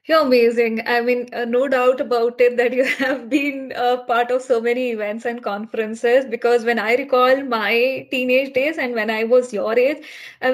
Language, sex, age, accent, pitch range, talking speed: English, female, 20-39, Indian, 225-255 Hz, 200 wpm